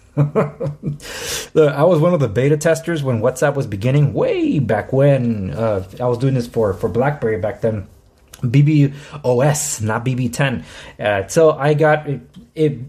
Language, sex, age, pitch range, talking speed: English, male, 20-39, 125-165 Hz, 160 wpm